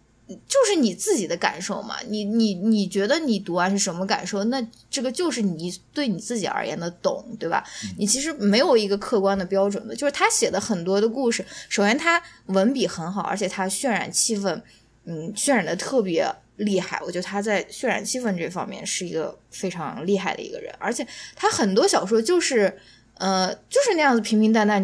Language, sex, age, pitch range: Chinese, female, 10-29, 185-250 Hz